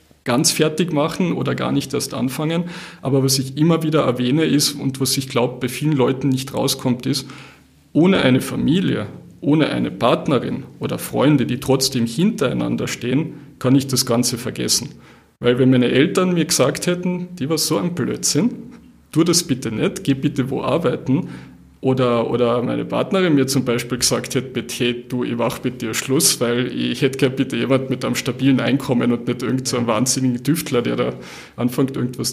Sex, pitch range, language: male, 125-145 Hz, German